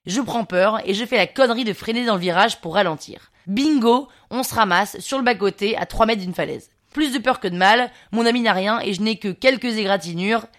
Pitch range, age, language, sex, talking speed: 195-255 Hz, 20-39, French, female, 245 wpm